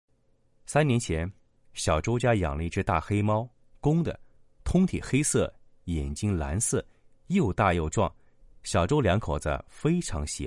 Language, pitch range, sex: Chinese, 80-130 Hz, male